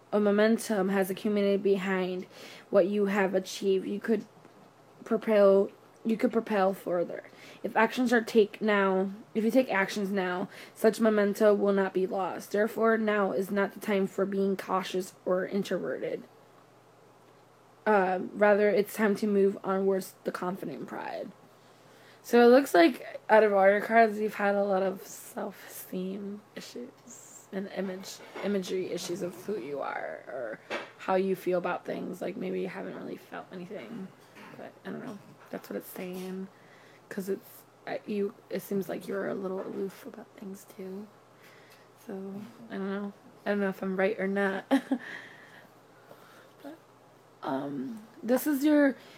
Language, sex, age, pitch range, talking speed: English, female, 20-39, 190-215 Hz, 160 wpm